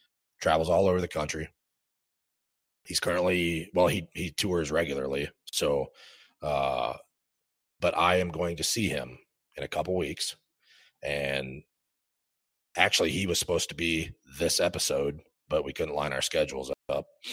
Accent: American